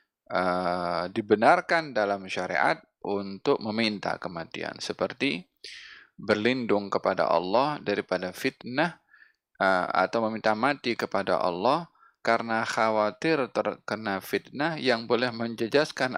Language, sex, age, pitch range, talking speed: Malay, male, 20-39, 105-145 Hz, 95 wpm